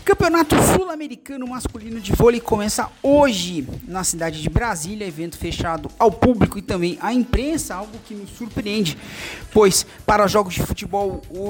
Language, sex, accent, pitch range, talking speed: Portuguese, male, Brazilian, 180-270 Hz, 155 wpm